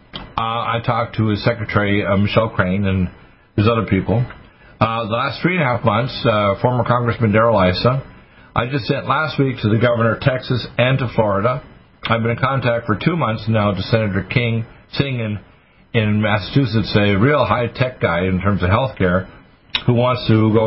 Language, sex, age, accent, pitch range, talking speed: English, male, 50-69, American, 100-125 Hz, 195 wpm